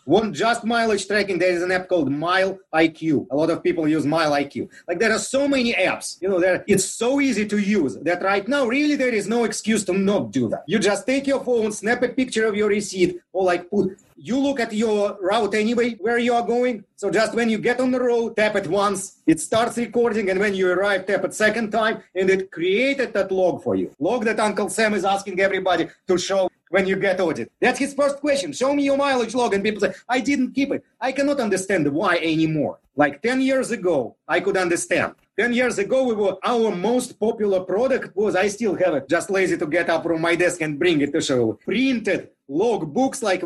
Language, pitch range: English, 175-235 Hz